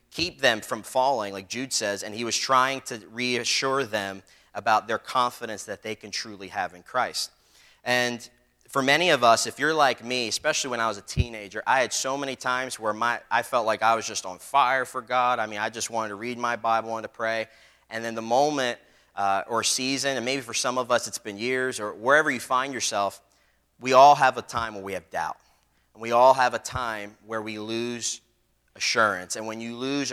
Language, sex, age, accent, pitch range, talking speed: English, male, 30-49, American, 105-120 Hz, 225 wpm